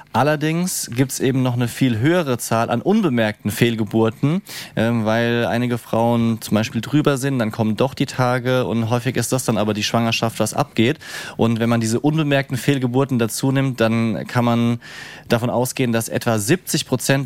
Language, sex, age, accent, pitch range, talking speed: German, male, 30-49, German, 115-145 Hz, 180 wpm